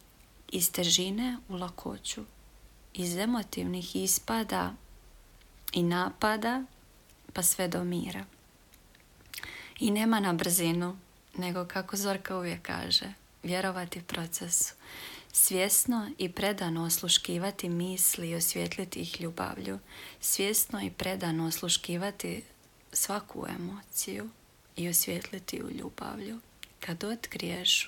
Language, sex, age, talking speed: Croatian, female, 30-49, 95 wpm